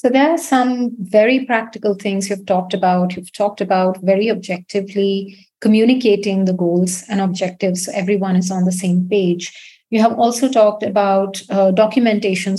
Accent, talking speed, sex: Indian, 160 wpm, female